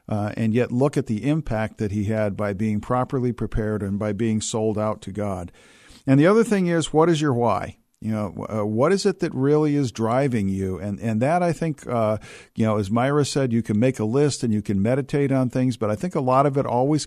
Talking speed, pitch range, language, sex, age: 250 wpm, 110-140 Hz, English, male, 50-69